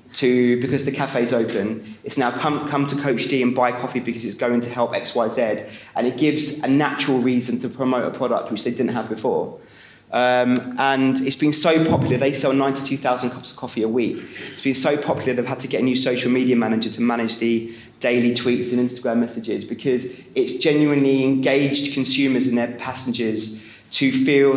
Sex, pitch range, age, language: male, 125-140 Hz, 20-39, English